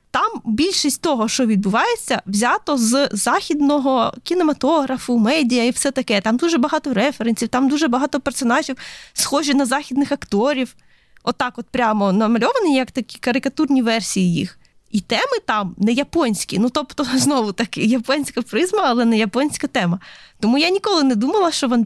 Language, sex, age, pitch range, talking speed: Ukrainian, female, 20-39, 220-280 Hz, 155 wpm